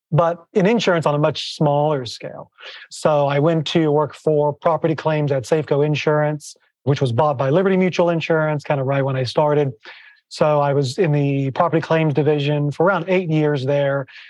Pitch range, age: 140-165 Hz, 30-49